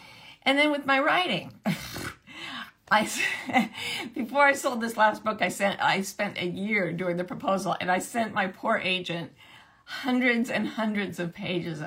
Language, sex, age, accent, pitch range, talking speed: English, female, 50-69, American, 185-265 Hz, 160 wpm